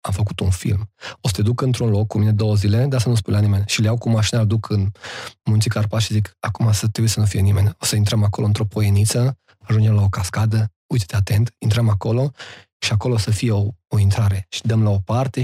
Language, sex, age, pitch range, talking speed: Romanian, male, 20-39, 110-150 Hz, 255 wpm